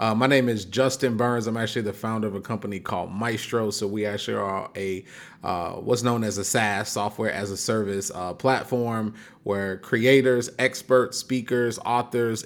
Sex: male